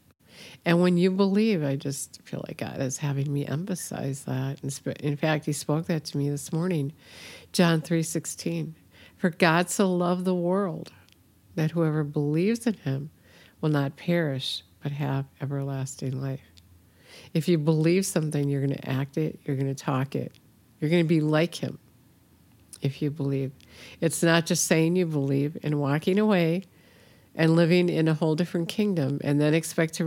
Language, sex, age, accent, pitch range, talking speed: English, female, 50-69, American, 140-175 Hz, 175 wpm